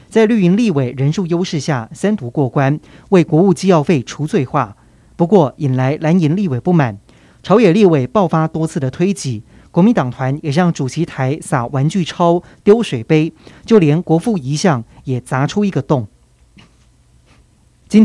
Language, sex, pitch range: Chinese, male, 135-185 Hz